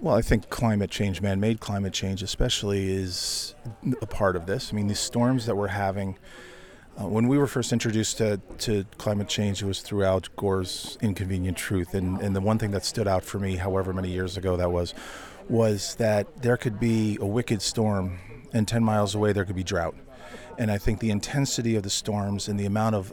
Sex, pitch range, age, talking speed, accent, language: male, 95-110 Hz, 40-59, 210 wpm, American, English